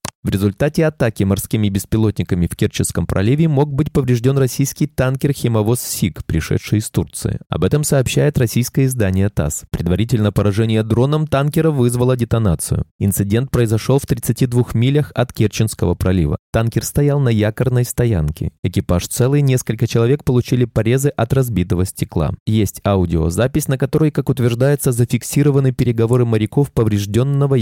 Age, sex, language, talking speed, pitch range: 20-39, male, Russian, 135 wpm, 100-135 Hz